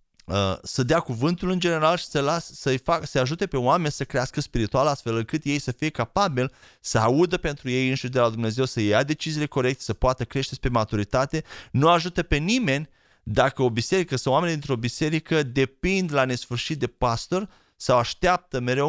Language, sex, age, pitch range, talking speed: Romanian, male, 30-49, 130-180 Hz, 170 wpm